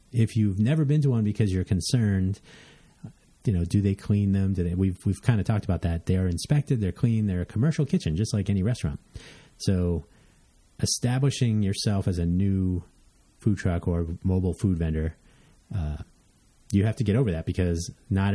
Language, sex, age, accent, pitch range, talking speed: English, male, 30-49, American, 90-110 Hz, 185 wpm